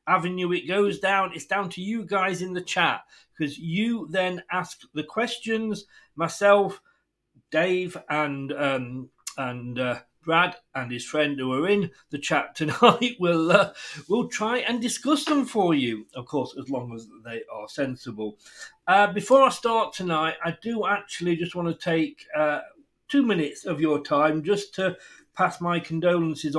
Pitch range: 135-200 Hz